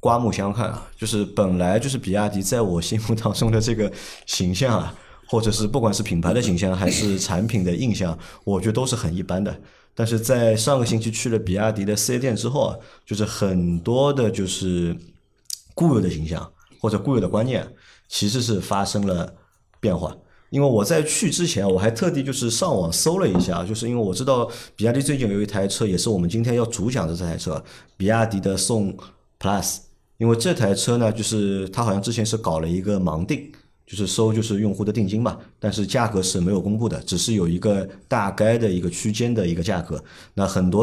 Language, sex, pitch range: Chinese, male, 90-115 Hz